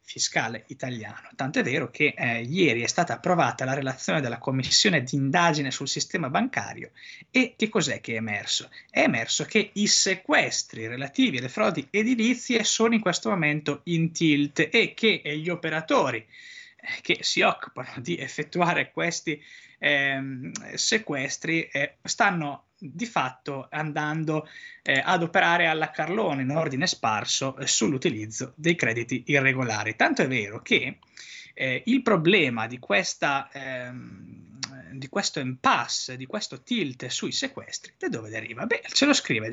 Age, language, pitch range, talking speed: 20-39, Italian, 135-210 Hz, 140 wpm